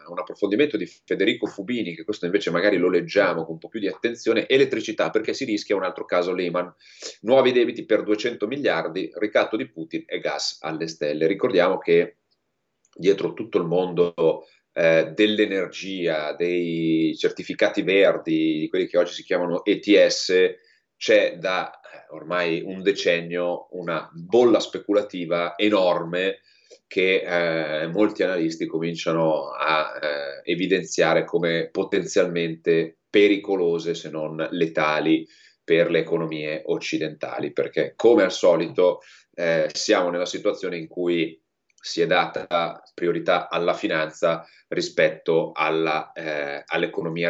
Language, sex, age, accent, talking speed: Italian, male, 30-49, native, 130 wpm